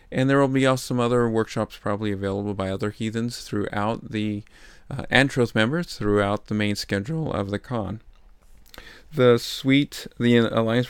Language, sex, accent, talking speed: English, male, American, 165 wpm